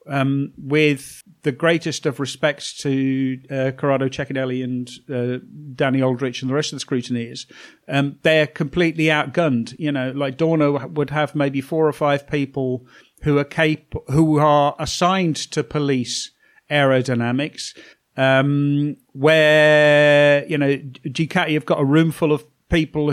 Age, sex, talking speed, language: 50-69, male, 145 wpm, English